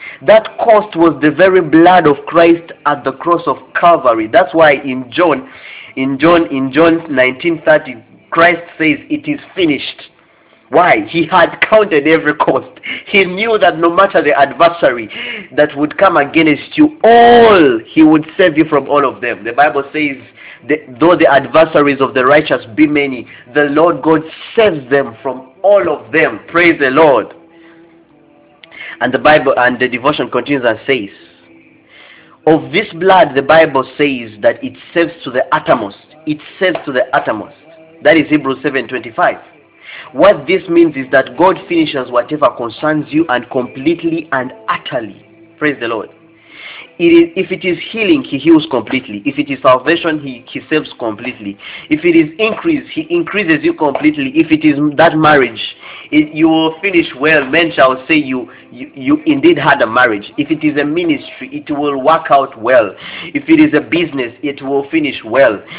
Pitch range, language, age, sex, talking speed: 140-220 Hz, English, 30-49, male, 170 wpm